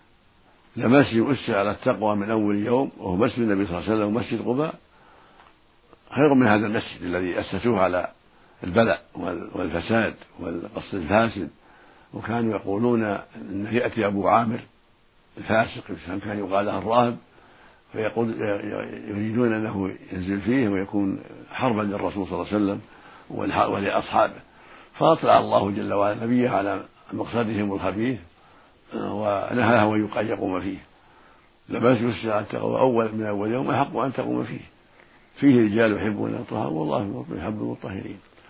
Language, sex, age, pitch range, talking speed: Arabic, male, 70-89, 100-115 Hz, 125 wpm